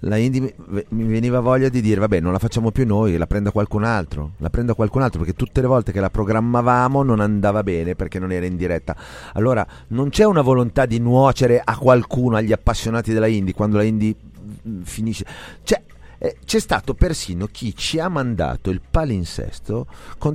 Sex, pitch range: male, 95-140 Hz